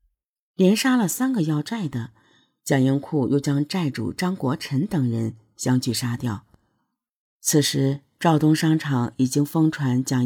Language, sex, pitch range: Chinese, female, 125-160 Hz